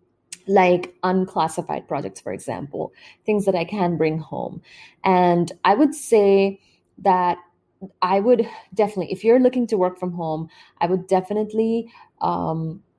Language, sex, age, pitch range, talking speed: English, female, 30-49, 170-195 Hz, 140 wpm